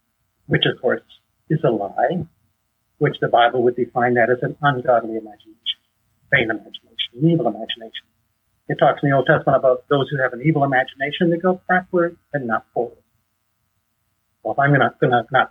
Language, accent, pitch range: English, American, 115-155 Hz